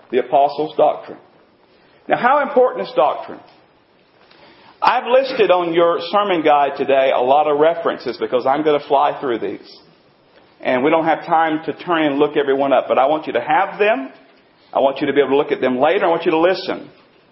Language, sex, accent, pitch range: English, male, American, 170-255 Hz